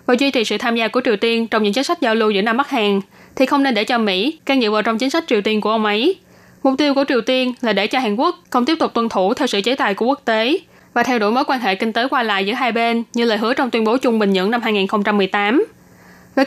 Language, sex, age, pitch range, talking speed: Vietnamese, female, 10-29, 215-265 Hz, 305 wpm